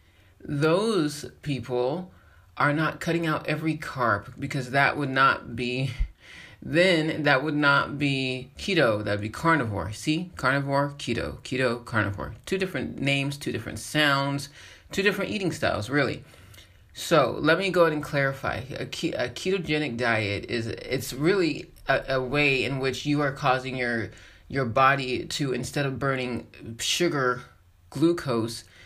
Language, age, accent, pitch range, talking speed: English, 30-49, American, 115-150 Hz, 145 wpm